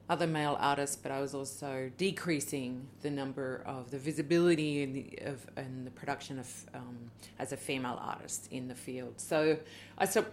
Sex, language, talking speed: female, English, 180 wpm